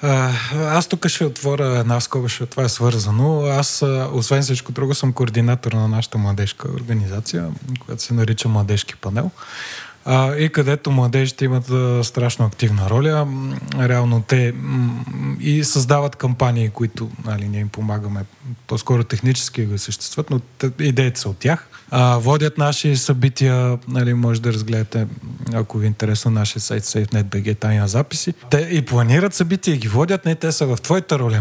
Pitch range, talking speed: 115-145 Hz, 155 wpm